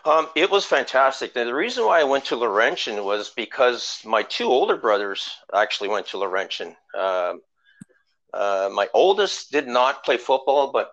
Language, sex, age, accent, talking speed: English, male, 50-69, American, 170 wpm